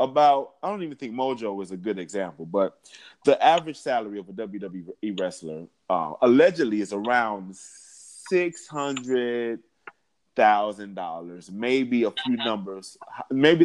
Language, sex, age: English, male, 30-49